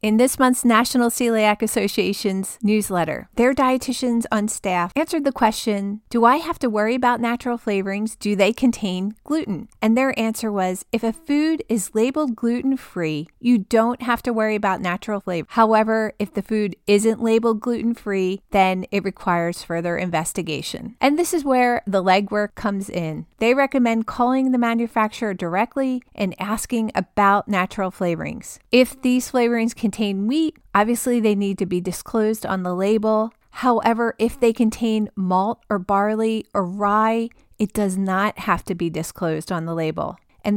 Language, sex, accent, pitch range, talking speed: English, female, American, 200-240 Hz, 160 wpm